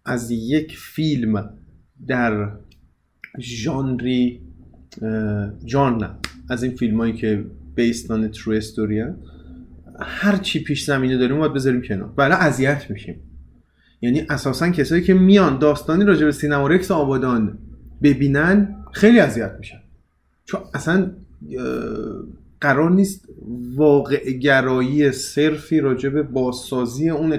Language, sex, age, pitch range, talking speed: Persian, male, 30-49, 115-160 Hz, 105 wpm